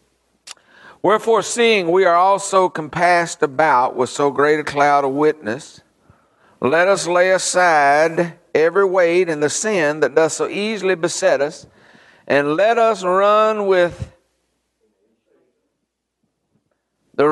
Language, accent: English, American